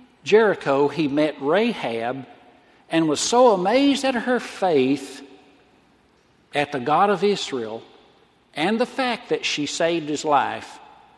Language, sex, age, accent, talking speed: English, male, 60-79, American, 130 wpm